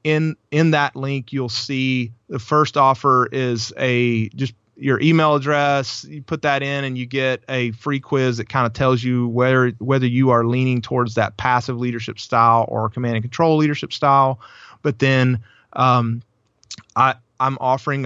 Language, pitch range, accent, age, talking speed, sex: English, 115-135 Hz, American, 30-49, 175 wpm, male